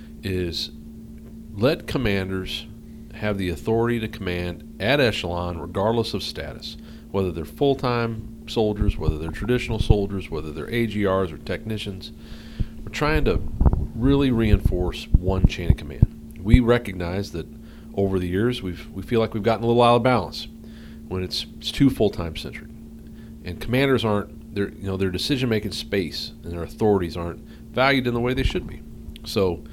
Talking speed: 160 wpm